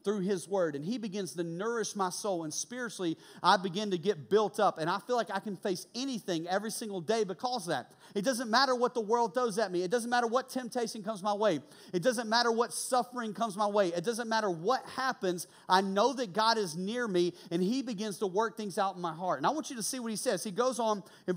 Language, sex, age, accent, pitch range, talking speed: English, male, 40-59, American, 190-235 Hz, 260 wpm